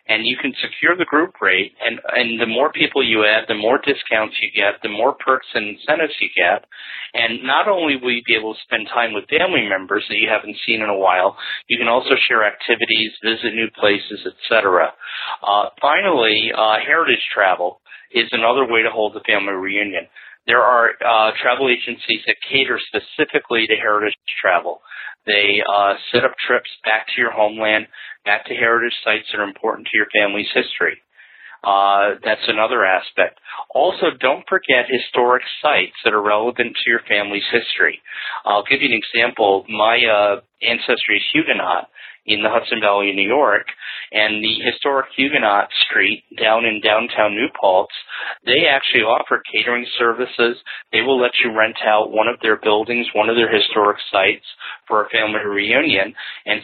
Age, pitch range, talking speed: 40-59, 105-120 Hz, 175 wpm